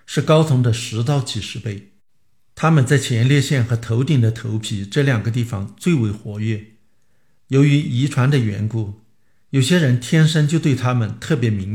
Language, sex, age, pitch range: Chinese, male, 50-69, 110-135 Hz